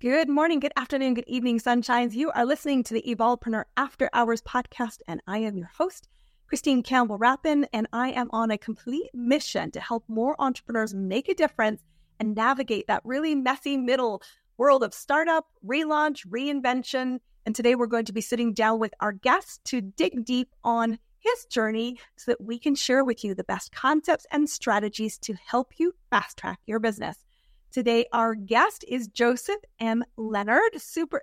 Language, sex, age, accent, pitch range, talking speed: English, female, 30-49, American, 225-280 Hz, 175 wpm